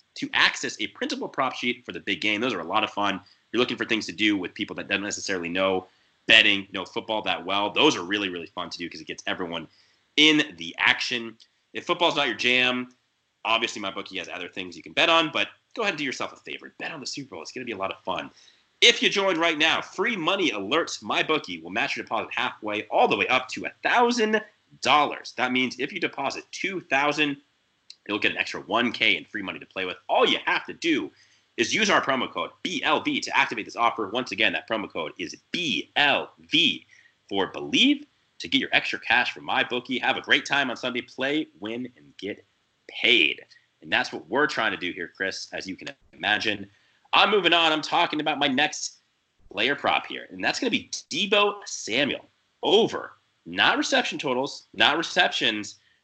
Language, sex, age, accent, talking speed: English, male, 30-49, American, 215 wpm